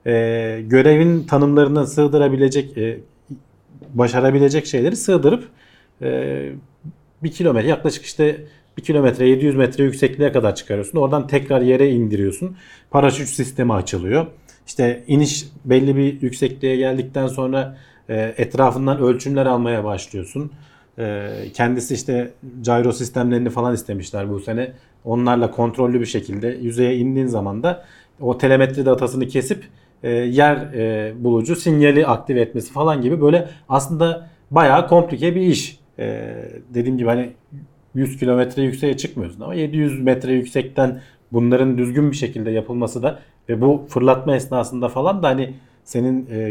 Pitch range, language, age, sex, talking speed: 120-140 Hz, Turkish, 40-59, male, 130 wpm